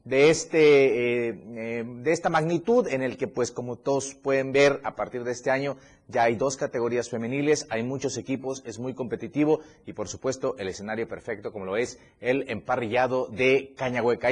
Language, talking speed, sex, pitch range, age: Spanish, 185 wpm, male, 120-150 Hz, 30-49